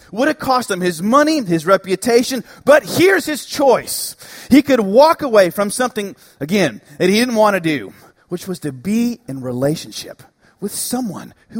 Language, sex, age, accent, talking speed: English, male, 30-49, American, 175 wpm